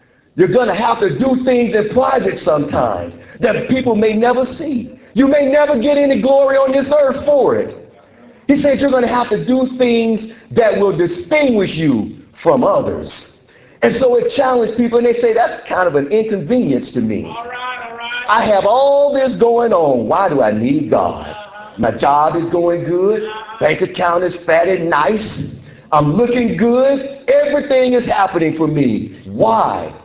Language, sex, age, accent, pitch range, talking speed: English, male, 50-69, American, 175-255 Hz, 170 wpm